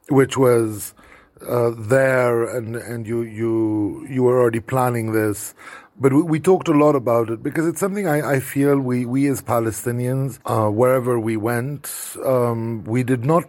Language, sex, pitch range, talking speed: English, male, 115-145 Hz, 175 wpm